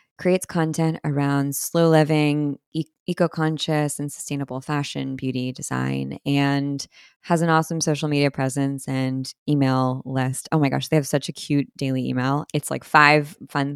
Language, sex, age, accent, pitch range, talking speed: English, female, 20-39, American, 135-170 Hz, 150 wpm